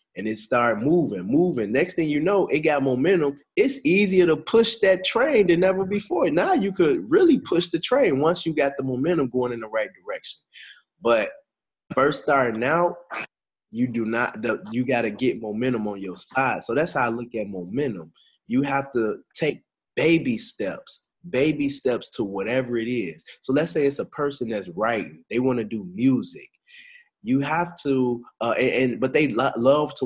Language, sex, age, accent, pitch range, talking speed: English, male, 20-39, American, 125-200 Hz, 185 wpm